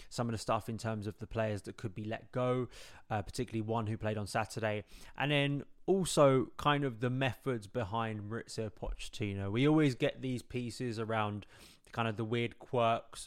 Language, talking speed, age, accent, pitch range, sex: English, 190 wpm, 20-39, British, 110-125 Hz, male